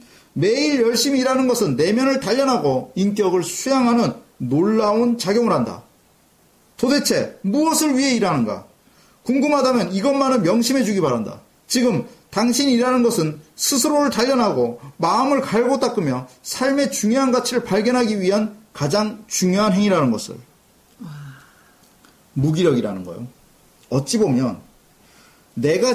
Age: 40-59